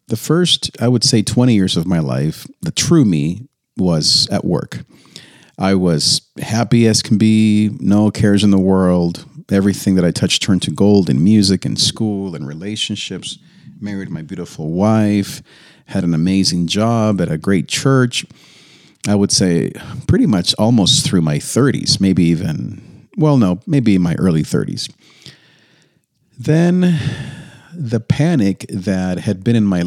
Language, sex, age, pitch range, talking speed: English, male, 40-59, 95-135 Hz, 155 wpm